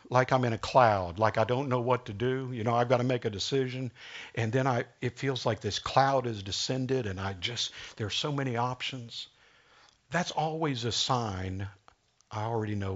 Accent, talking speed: American, 205 wpm